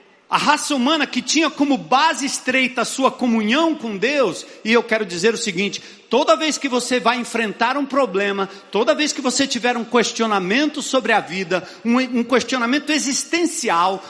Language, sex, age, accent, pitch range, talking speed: Portuguese, male, 50-69, Brazilian, 200-275 Hz, 170 wpm